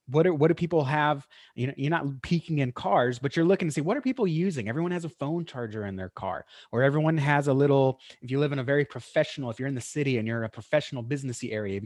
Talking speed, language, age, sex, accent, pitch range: 275 wpm, English, 30-49, male, American, 115-155 Hz